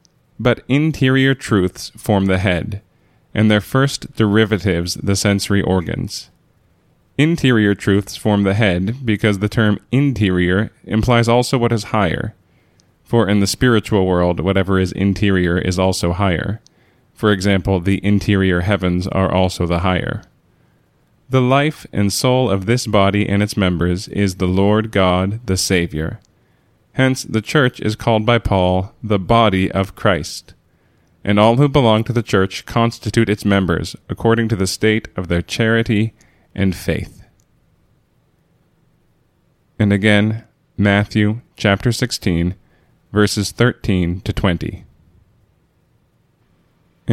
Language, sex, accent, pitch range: English, male, American, 95-115 Hz